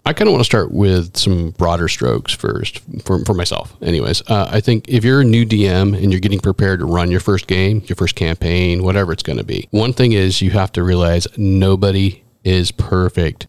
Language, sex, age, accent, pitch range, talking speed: English, male, 40-59, American, 90-115 Hz, 220 wpm